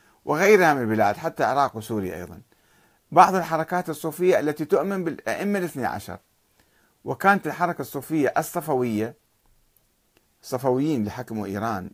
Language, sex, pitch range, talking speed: Arabic, male, 120-180 Hz, 105 wpm